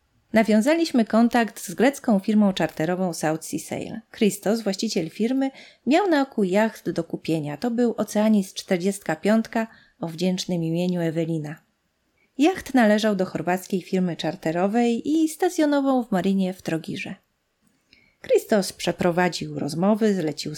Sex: female